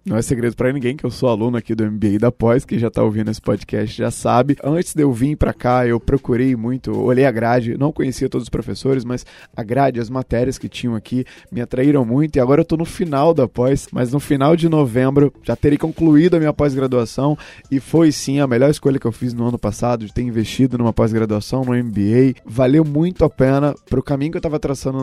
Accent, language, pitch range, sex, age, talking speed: Brazilian, Portuguese, 120-145 Hz, male, 20-39, 235 wpm